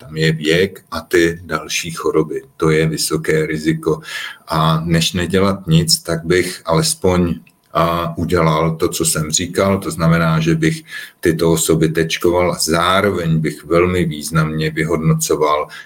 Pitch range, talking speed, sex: 80-95 Hz, 130 wpm, male